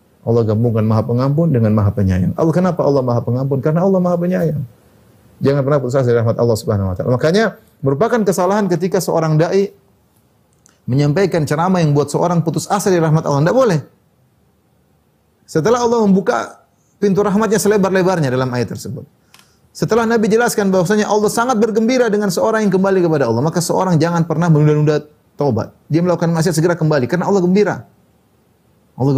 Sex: male